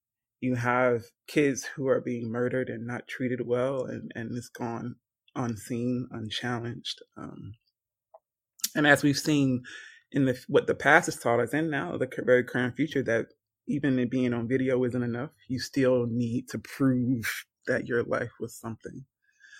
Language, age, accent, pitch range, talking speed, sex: English, 30-49, American, 120-145 Hz, 165 wpm, male